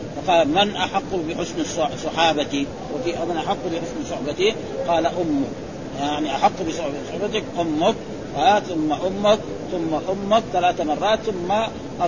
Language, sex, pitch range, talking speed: Arabic, male, 160-220 Hz, 130 wpm